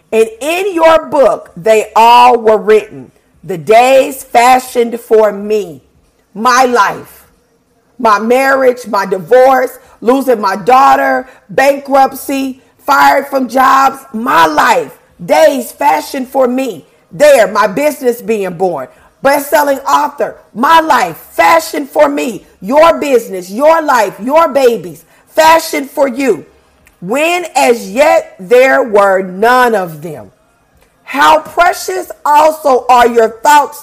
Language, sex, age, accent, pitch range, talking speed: English, female, 40-59, American, 220-295 Hz, 120 wpm